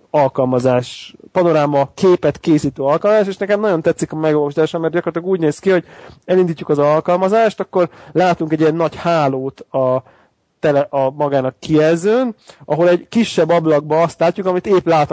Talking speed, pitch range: 155 wpm, 145-175 Hz